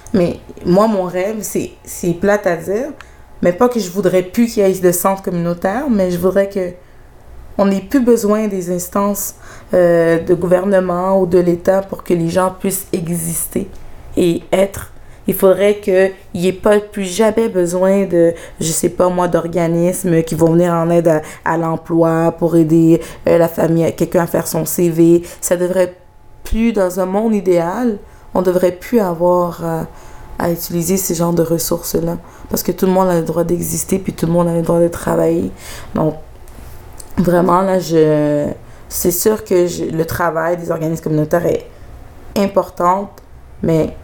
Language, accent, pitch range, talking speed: French, Canadian, 165-190 Hz, 175 wpm